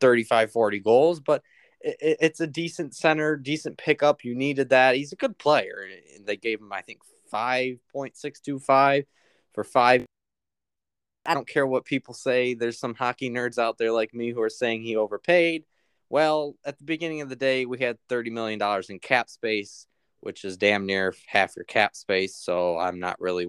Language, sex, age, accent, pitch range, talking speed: English, male, 20-39, American, 105-145 Hz, 180 wpm